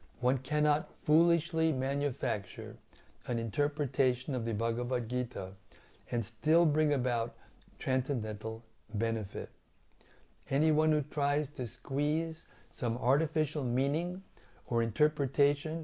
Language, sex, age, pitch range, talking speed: English, male, 60-79, 105-140 Hz, 100 wpm